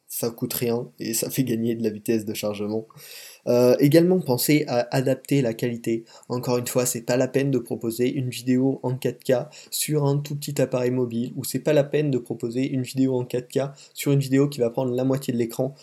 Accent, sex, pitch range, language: French, male, 120-140 Hz, French